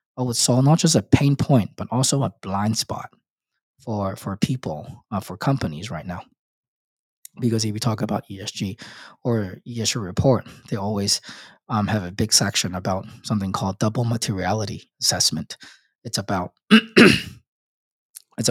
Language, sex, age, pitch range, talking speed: English, male, 20-39, 105-130 Hz, 150 wpm